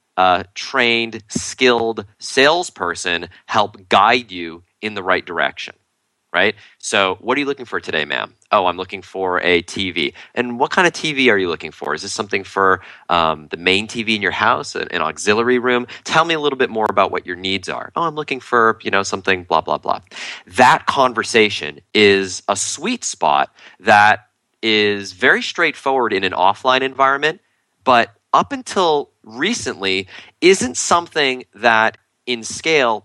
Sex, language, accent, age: male, English, American, 30-49